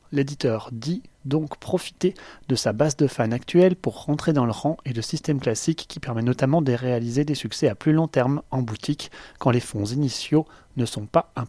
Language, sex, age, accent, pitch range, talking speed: French, male, 30-49, French, 125-160 Hz, 210 wpm